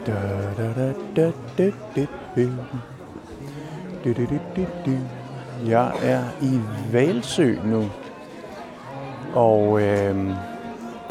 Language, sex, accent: Danish, male, native